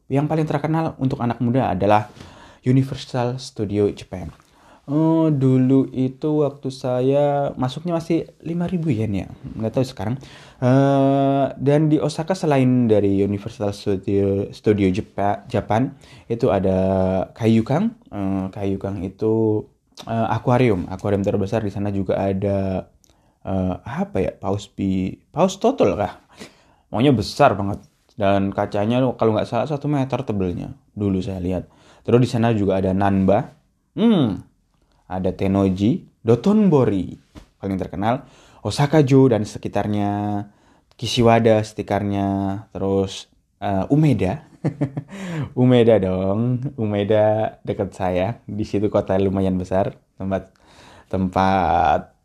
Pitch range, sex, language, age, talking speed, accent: 100-135 Hz, male, Indonesian, 20-39, 120 wpm, native